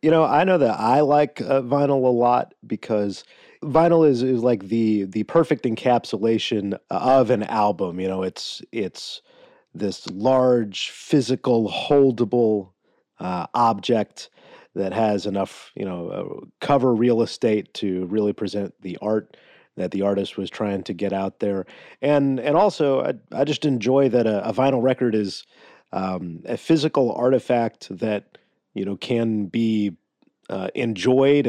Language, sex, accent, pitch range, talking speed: English, male, American, 100-125 Hz, 150 wpm